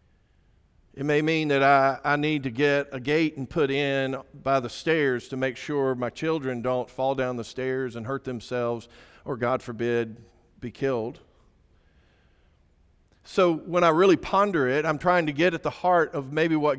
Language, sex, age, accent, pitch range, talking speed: English, male, 50-69, American, 135-200 Hz, 180 wpm